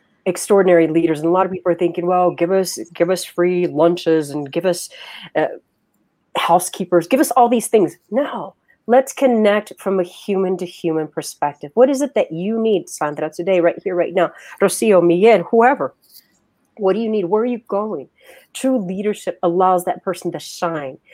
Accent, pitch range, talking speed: American, 170-220 Hz, 185 wpm